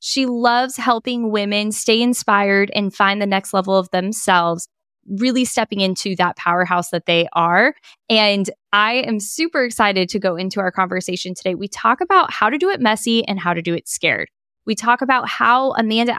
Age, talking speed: 10-29, 190 wpm